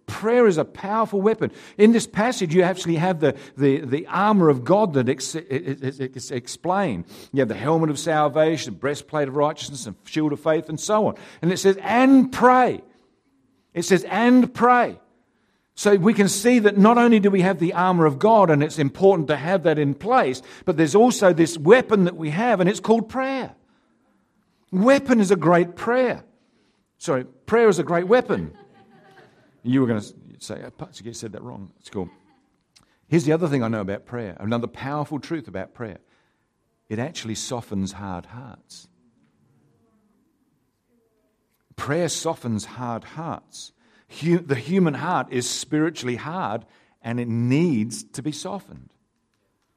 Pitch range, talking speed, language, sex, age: 130-195 Hz, 160 wpm, English, male, 50-69